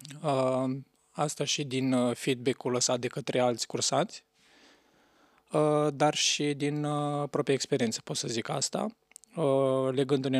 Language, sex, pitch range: Romanian, male, 125-145 Hz